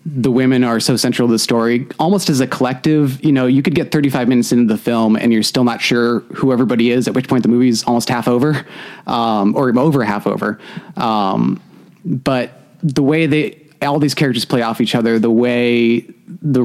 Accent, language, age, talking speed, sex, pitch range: American, English, 30-49, 215 wpm, male, 110-140 Hz